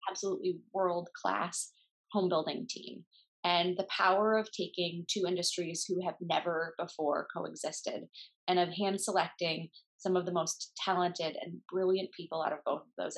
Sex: female